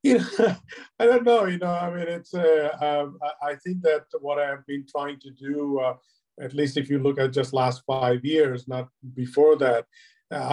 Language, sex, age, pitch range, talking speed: English, male, 50-69, 125-145 Hz, 205 wpm